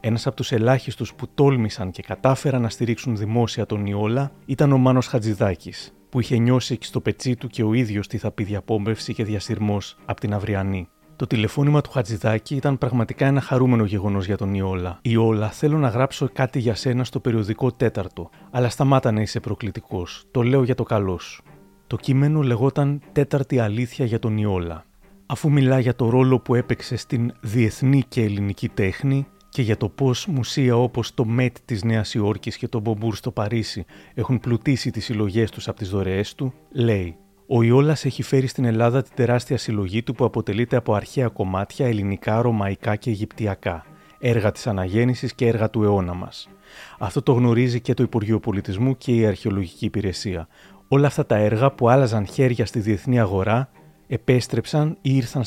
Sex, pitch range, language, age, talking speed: male, 105-130 Hz, Greek, 30-49, 180 wpm